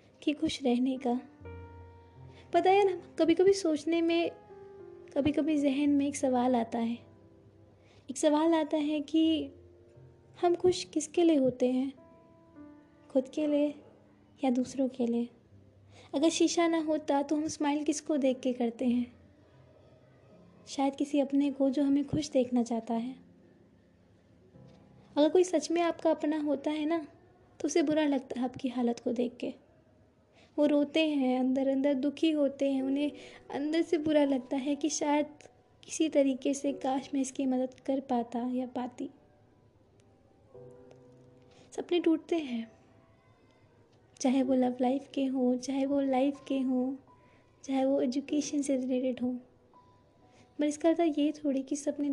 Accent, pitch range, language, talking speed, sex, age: native, 250-300 Hz, Hindi, 155 wpm, female, 20-39